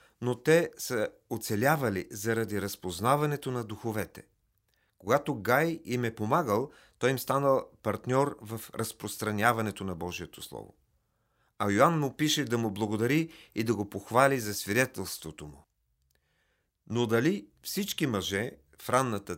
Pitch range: 95-130 Hz